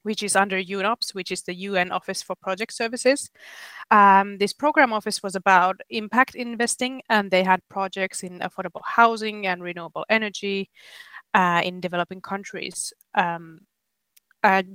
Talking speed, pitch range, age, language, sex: 145 wpm, 180-220 Hz, 20-39, Finnish, female